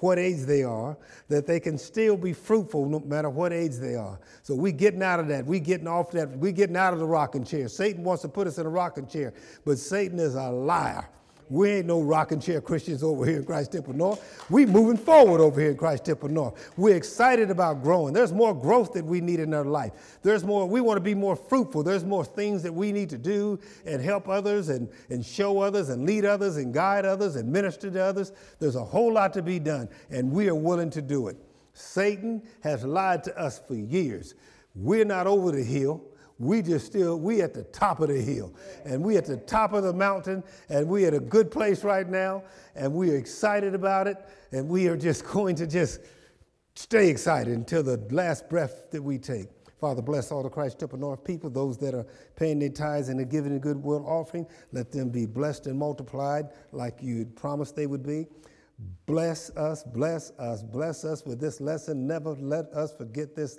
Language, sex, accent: English, male, American